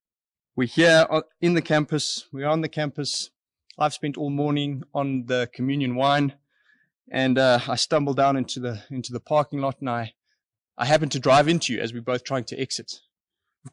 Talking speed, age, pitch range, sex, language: 190 wpm, 20-39, 125-150 Hz, male, English